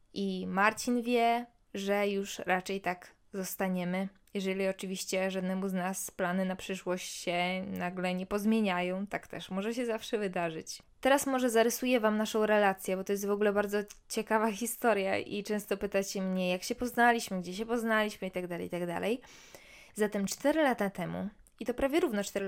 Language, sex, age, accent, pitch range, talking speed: Polish, female, 20-39, native, 185-220 Hz, 165 wpm